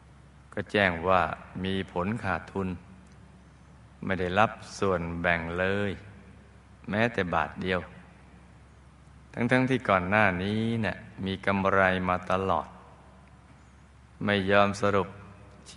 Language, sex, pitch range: Thai, male, 90-105 Hz